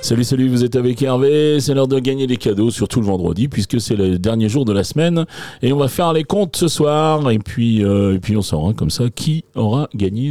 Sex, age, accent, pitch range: male, 40-59, French, 110-155 Hz